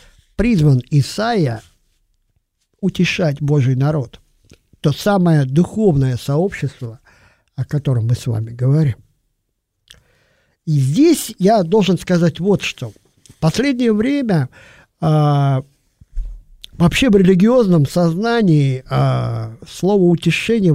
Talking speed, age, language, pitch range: 90 wpm, 50-69, Russian, 110-185 Hz